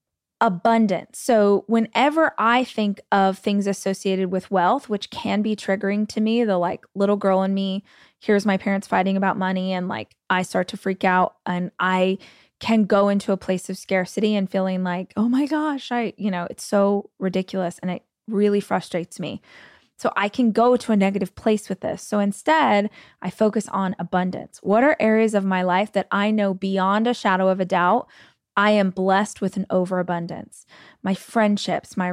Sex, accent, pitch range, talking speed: female, American, 190-220 Hz, 190 wpm